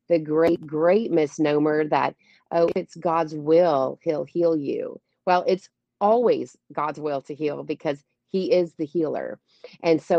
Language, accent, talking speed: English, American, 155 wpm